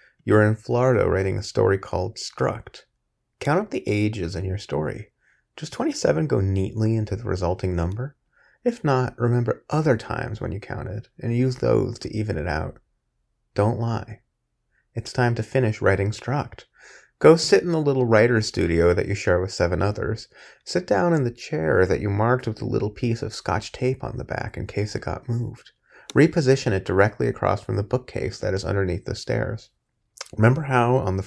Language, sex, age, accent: English, male, 30-49, American